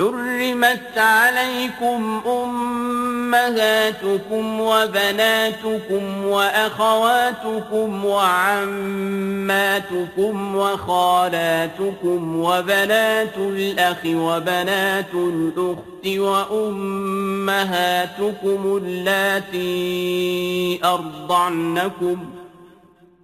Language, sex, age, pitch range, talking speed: Arabic, male, 40-59, 180-215 Hz, 35 wpm